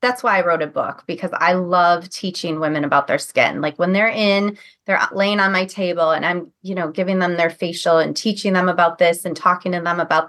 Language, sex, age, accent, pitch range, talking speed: English, female, 20-39, American, 175-215 Hz, 240 wpm